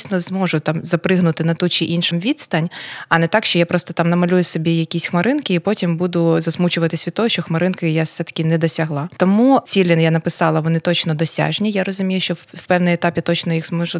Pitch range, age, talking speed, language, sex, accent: 170-195 Hz, 20-39, 205 wpm, Ukrainian, female, native